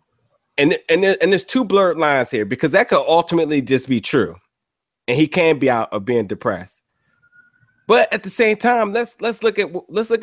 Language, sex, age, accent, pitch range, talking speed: English, male, 30-49, American, 125-170 Hz, 200 wpm